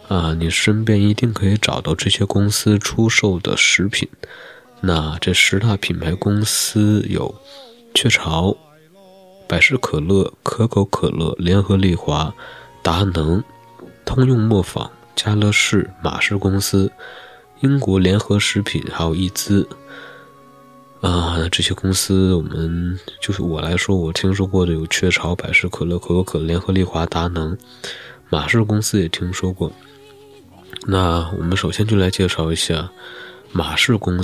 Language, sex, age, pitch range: Chinese, male, 20-39, 85-105 Hz